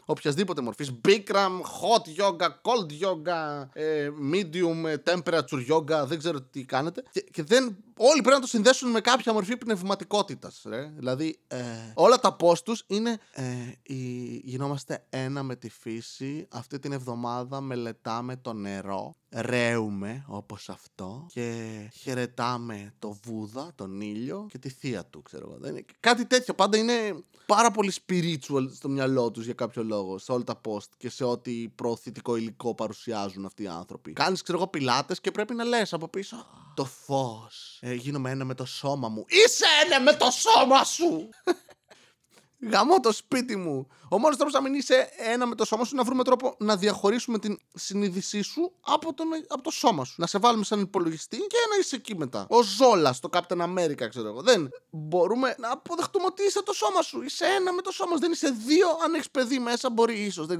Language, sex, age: Greek, male, 20-39